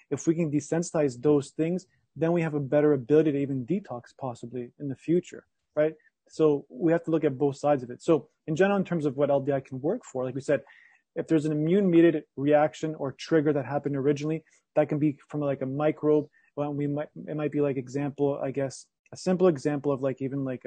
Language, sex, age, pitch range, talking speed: English, male, 30-49, 140-160 Hz, 225 wpm